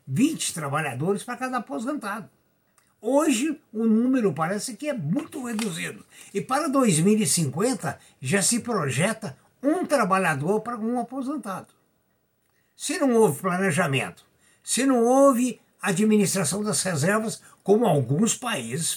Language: Portuguese